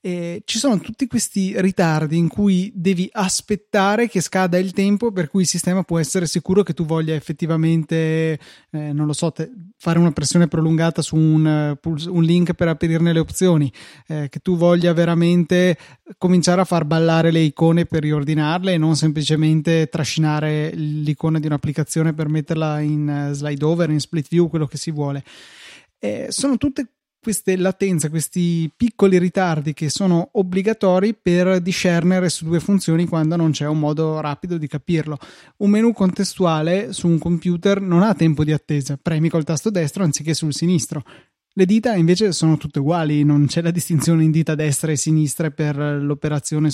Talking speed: 170 wpm